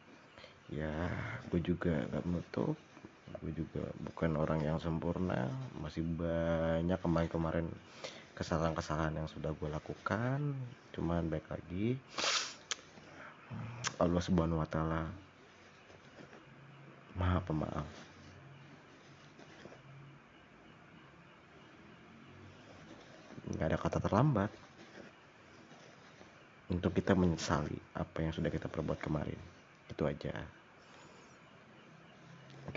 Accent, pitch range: native, 80-100 Hz